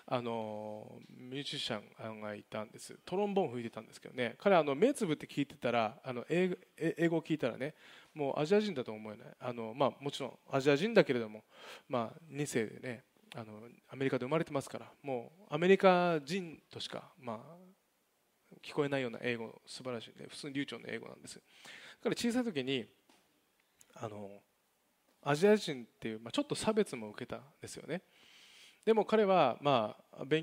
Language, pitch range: Japanese, 120-185 Hz